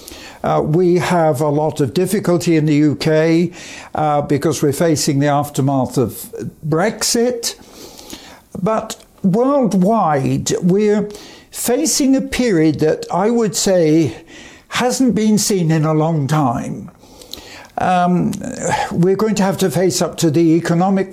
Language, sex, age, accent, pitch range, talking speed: English, male, 60-79, British, 155-220 Hz, 130 wpm